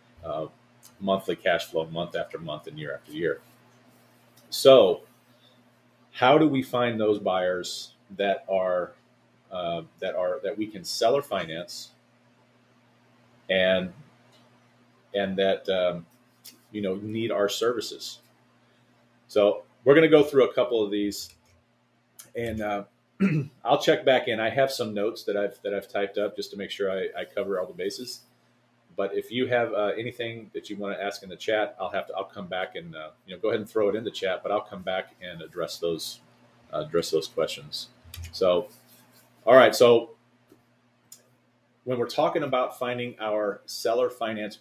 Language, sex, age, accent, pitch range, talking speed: English, male, 30-49, American, 100-125 Hz, 175 wpm